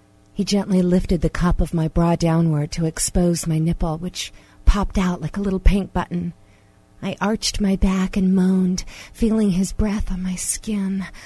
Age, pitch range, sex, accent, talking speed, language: 40-59, 155-195 Hz, female, American, 175 wpm, English